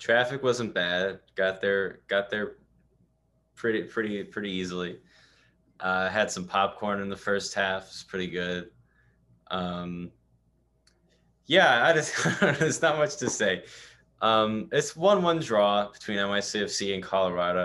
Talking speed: 135 wpm